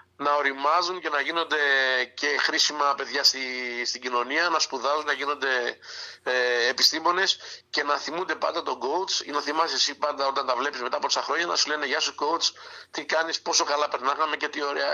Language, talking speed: Greek, 195 wpm